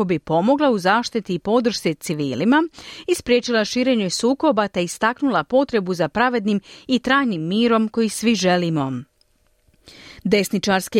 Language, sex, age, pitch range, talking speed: Croatian, female, 40-59, 185-260 Hz, 120 wpm